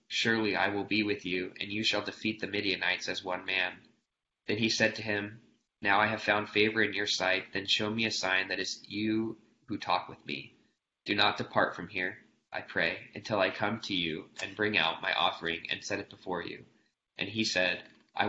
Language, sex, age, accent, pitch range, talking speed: English, male, 20-39, American, 95-110 Hz, 220 wpm